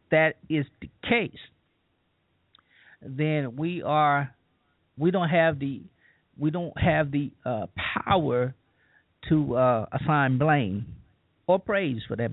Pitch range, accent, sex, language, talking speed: 120-160 Hz, American, male, English, 120 wpm